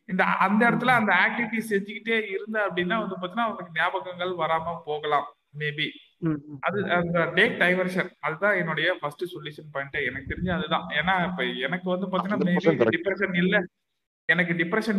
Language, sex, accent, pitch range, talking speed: Tamil, male, native, 165-205 Hz, 95 wpm